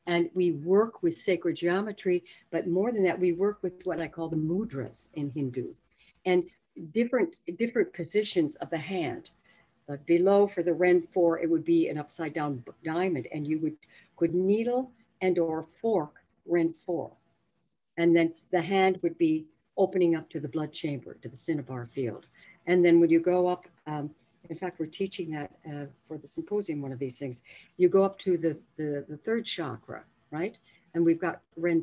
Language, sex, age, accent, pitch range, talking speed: English, female, 60-79, American, 155-190 Hz, 190 wpm